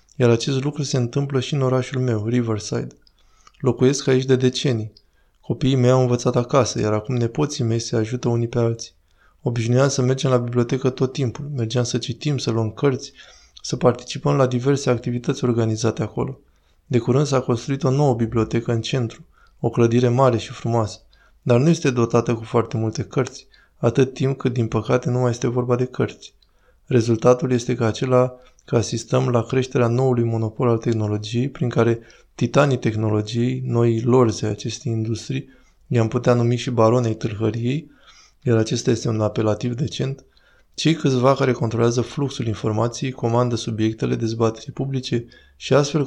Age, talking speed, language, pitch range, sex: 20-39, 165 wpm, Romanian, 115-130 Hz, male